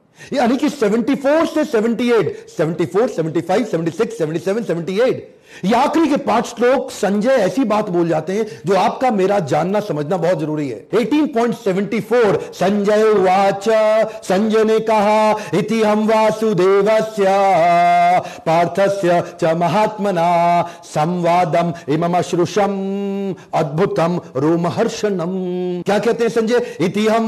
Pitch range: 170-220 Hz